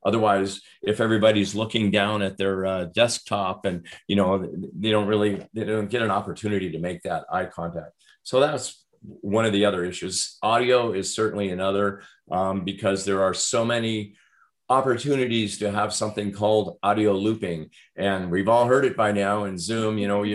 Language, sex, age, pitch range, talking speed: English, male, 40-59, 95-105 Hz, 175 wpm